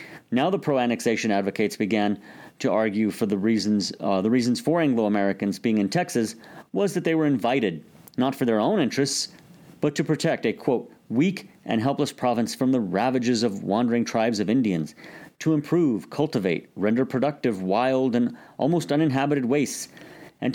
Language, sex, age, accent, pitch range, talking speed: English, male, 40-59, American, 105-145 Hz, 160 wpm